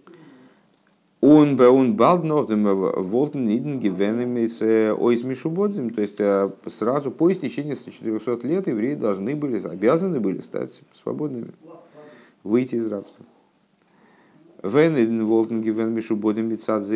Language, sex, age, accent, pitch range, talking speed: Russian, male, 50-69, native, 105-120 Hz, 65 wpm